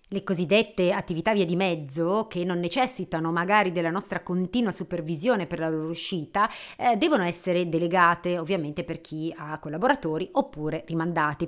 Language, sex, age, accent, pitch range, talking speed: Italian, female, 30-49, native, 160-205 Hz, 150 wpm